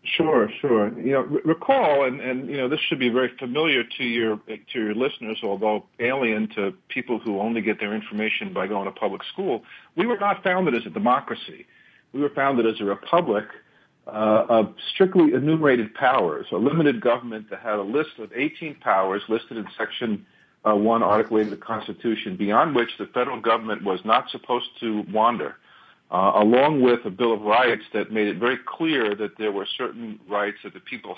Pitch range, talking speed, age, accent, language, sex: 105-130 Hz, 195 wpm, 50-69, American, English, male